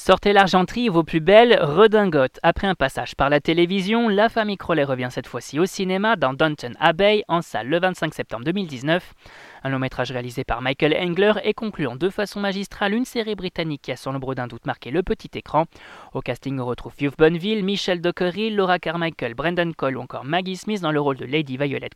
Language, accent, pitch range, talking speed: French, French, 135-195 Hz, 210 wpm